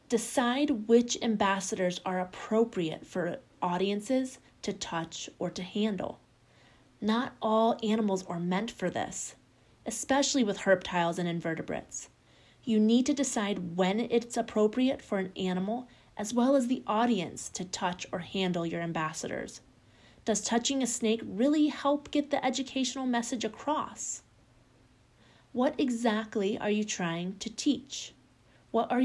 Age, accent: 30-49, American